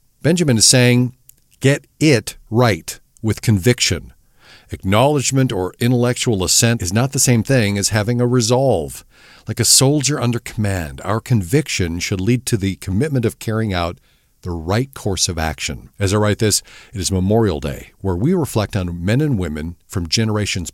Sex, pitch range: male, 90-125 Hz